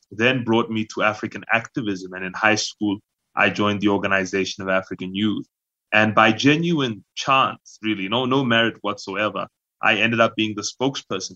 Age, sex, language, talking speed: 20-39, male, English, 170 wpm